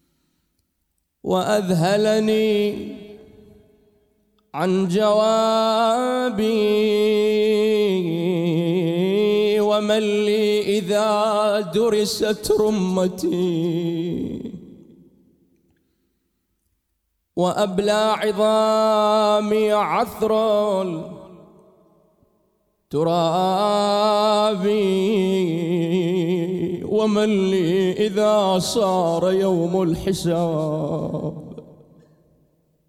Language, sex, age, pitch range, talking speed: Arabic, male, 30-49, 180-215 Hz, 35 wpm